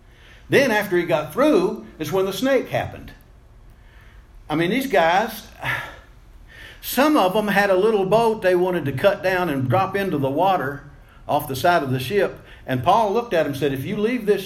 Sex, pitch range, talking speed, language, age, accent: male, 125-185 Hz, 200 wpm, English, 50-69, American